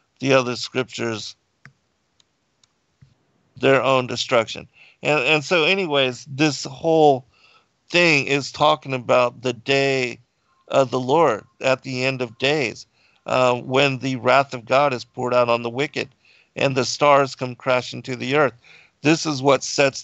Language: English